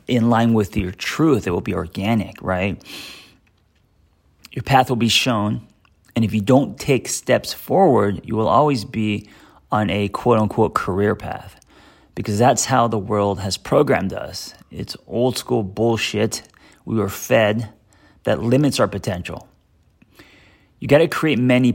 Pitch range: 100-115 Hz